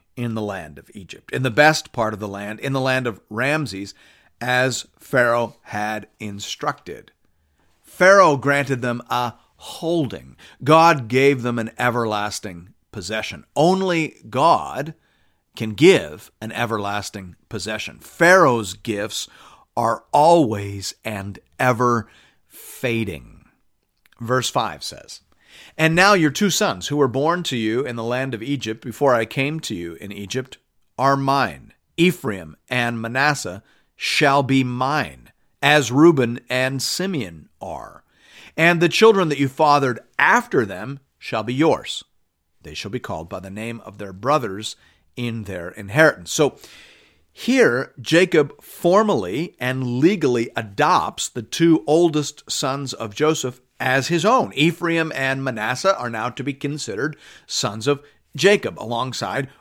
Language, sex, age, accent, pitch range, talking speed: English, male, 40-59, American, 110-150 Hz, 135 wpm